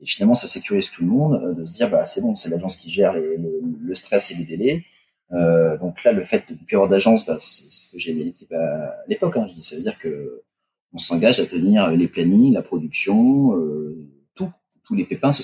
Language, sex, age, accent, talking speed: French, male, 30-49, French, 235 wpm